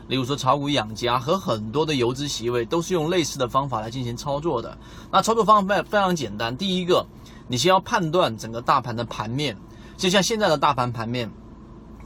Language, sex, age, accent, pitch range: Chinese, male, 30-49, native, 120-170 Hz